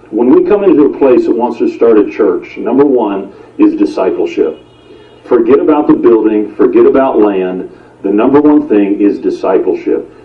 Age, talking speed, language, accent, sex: 50-69, 170 wpm, English, American, male